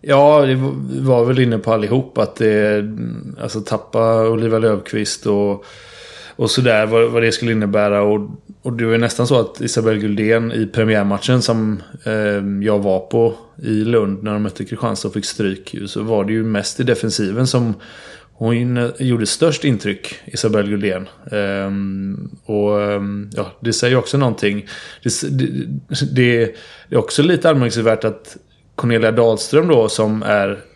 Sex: male